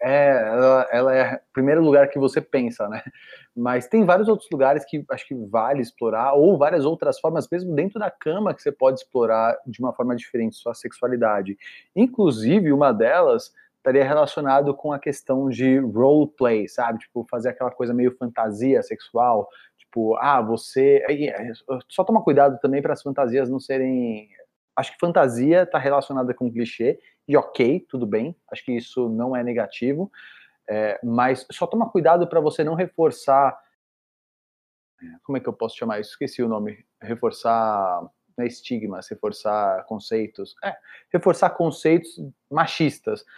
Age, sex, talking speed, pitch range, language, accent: 30-49, male, 160 wpm, 120-150 Hz, Portuguese, Brazilian